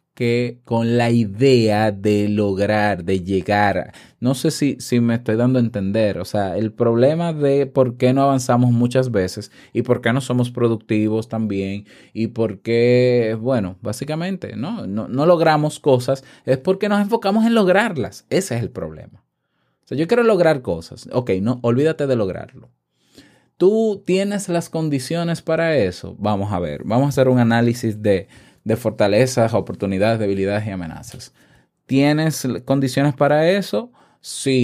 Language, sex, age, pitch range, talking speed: Spanish, male, 20-39, 105-135 Hz, 160 wpm